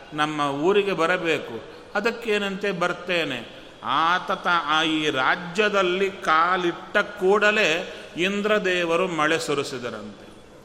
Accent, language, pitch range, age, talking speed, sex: native, Kannada, 155-195 Hz, 30-49, 80 wpm, male